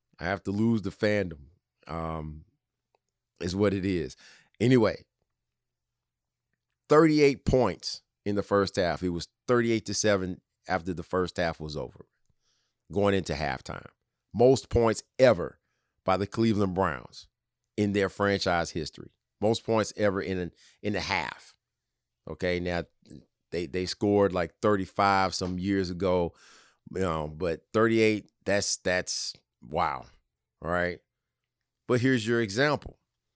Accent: American